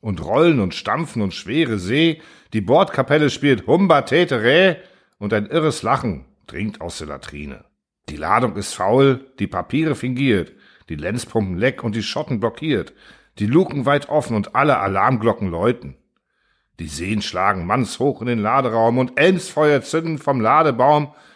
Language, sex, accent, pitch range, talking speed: German, male, German, 105-140 Hz, 150 wpm